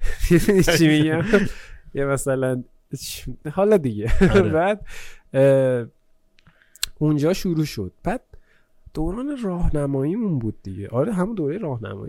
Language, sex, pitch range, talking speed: Persian, male, 130-195 Hz, 85 wpm